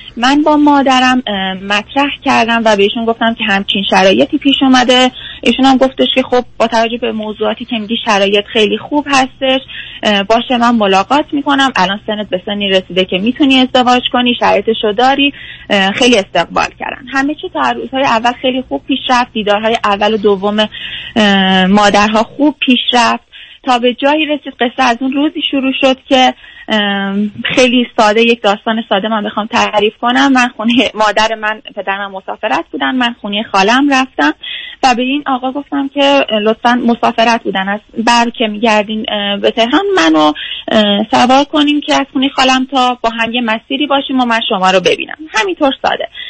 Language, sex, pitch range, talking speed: Persian, female, 215-275 Hz, 165 wpm